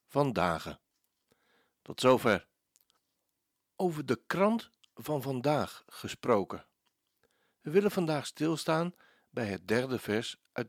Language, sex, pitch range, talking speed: Dutch, male, 130-180 Hz, 105 wpm